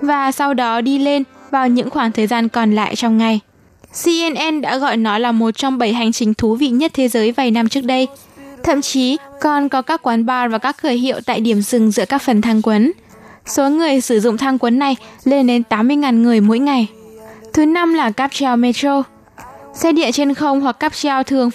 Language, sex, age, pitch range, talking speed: Vietnamese, female, 10-29, 235-280 Hz, 215 wpm